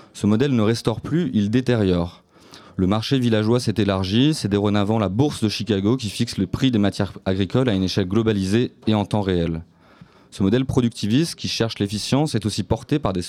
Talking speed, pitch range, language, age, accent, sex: 200 wpm, 100-120 Hz, French, 30-49, French, male